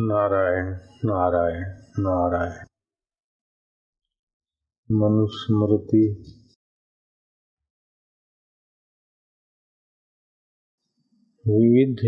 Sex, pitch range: male, 95-120 Hz